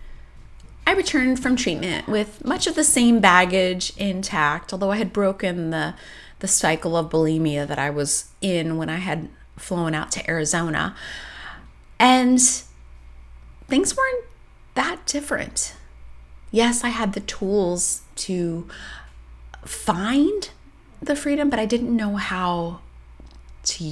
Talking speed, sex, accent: 130 wpm, female, American